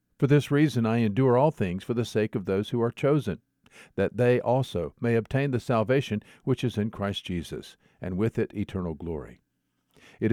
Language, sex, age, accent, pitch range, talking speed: English, male, 50-69, American, 95-125 Hz, 190 wpm